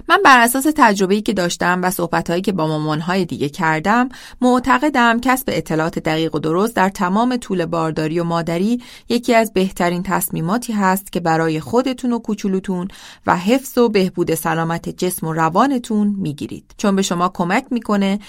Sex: female